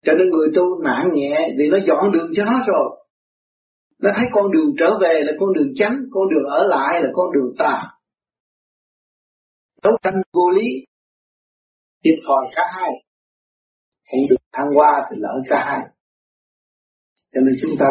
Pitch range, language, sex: 145-230 Hz, Vietnamese, male